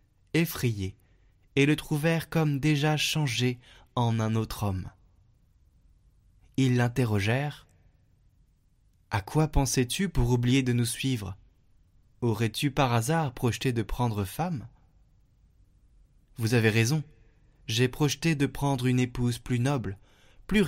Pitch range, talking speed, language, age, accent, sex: 105-135 Hz, 115 wpm, French, 20-39, French, male